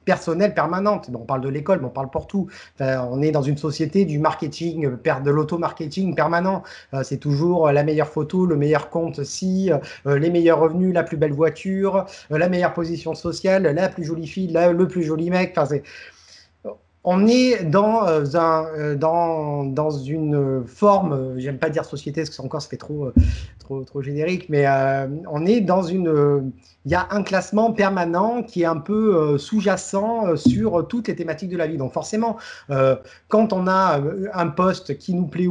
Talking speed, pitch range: 180 wpm, 150-185 Hz